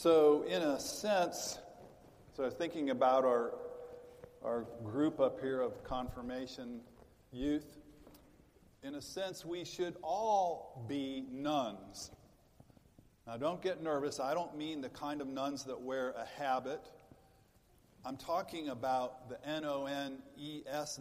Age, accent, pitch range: 50-69, American, 130-160 Hz